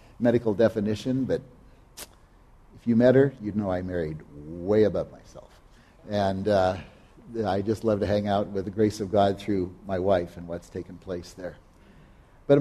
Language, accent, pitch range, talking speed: English, American, 100-125 Hz, 170 wpm